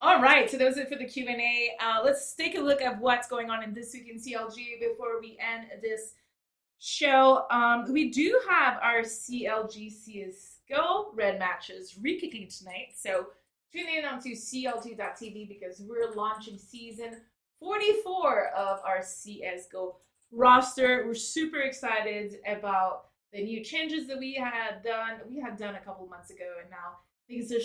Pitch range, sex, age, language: 200-260 Hz, female, 20-39, English